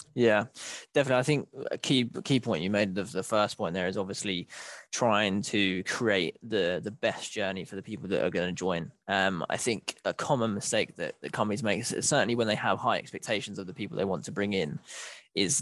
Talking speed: 220 wpm